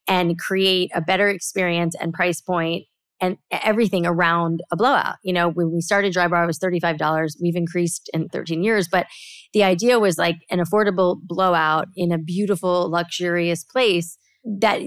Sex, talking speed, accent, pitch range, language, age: female, 170 wpm, American, 170-205 Hz, English, 30-49